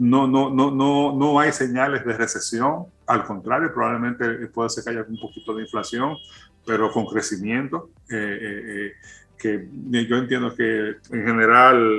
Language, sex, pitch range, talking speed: Spanish, male, 110-135 Hz, 160 wpm